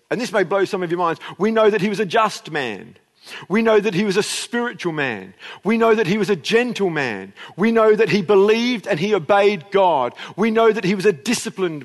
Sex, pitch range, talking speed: male, 180-225 Hz, 245 wpm